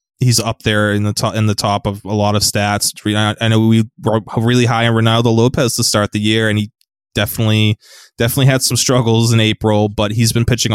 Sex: male